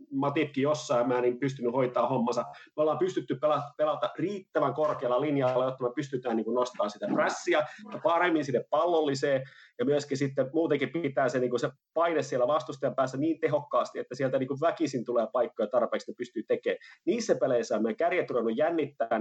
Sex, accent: male, native